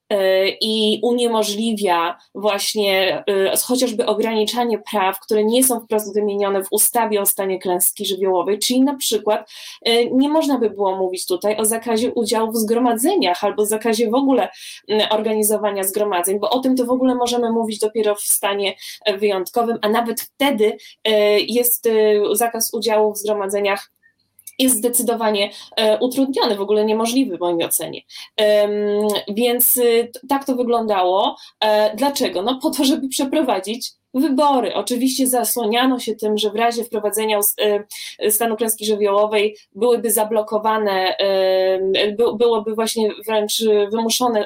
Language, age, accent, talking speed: Polish, 20-39, native, 140 wpm